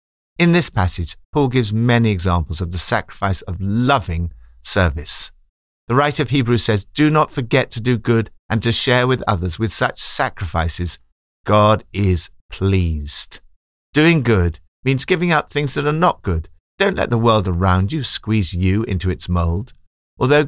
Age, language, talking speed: 50-69, English, 165 wpm